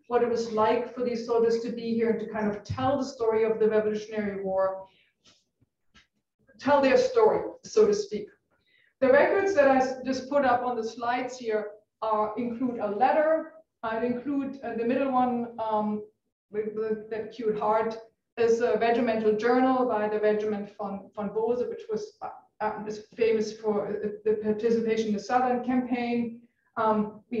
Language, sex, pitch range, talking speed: English, female, 215-255 Hz, 175 wpm